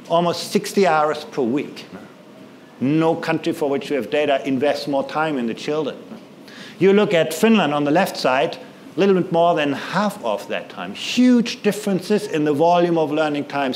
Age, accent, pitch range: 50-69, German, 150-195 Hz